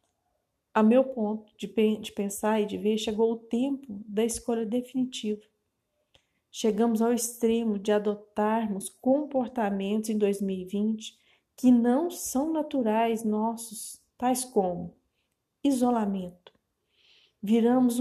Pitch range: 215-250 Hz